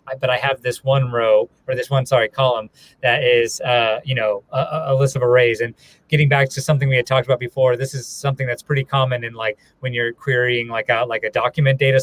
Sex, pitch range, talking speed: male, 125-145 Hz, 240 wpm